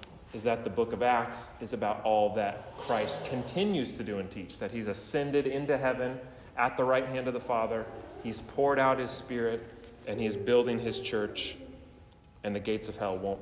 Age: 30-49